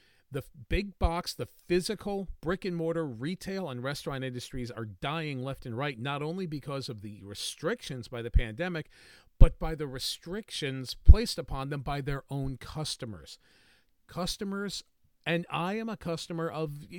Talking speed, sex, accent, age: 150 wpm, male, American, 40-59